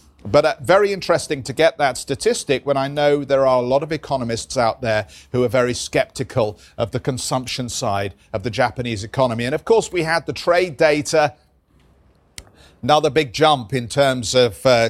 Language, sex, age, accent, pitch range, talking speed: English, male, 40-59, British, 115-145 Hz, 185 wpm